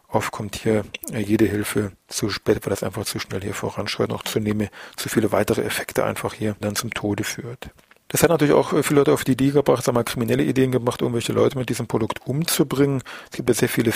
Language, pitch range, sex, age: German, 110-125 Hz, male, 40-59